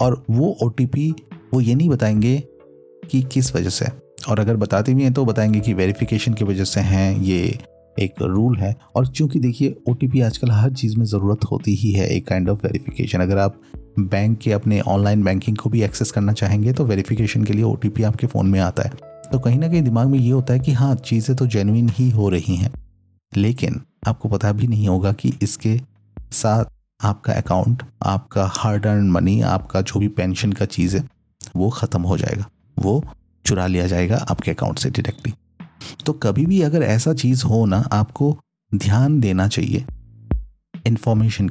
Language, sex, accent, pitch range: Hindi, male, native, 100-125 Hz